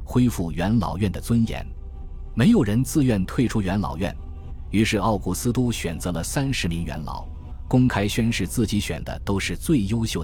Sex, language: male, Chinese